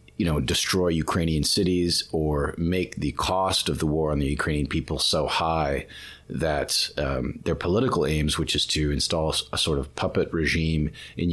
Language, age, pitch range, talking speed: English, 40-59, 75-85 Hz, 175 wpm